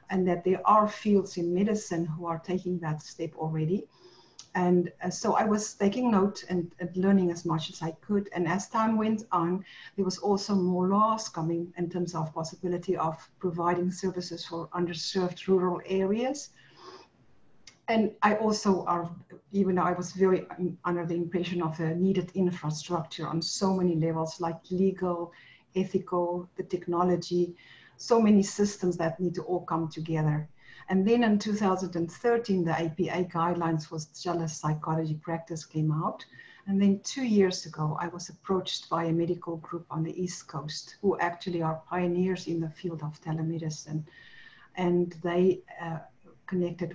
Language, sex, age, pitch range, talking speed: English, female, 50-69, 165-190 Hz, 160 wpm